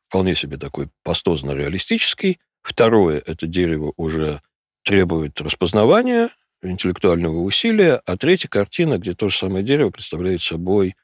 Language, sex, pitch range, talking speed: Russian, male, 75-105 Hz, 120 wpm